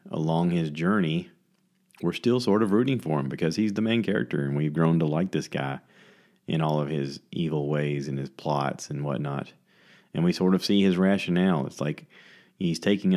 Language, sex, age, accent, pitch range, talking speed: English, male, 30-49, American, 80-125 Hz, 200 wpm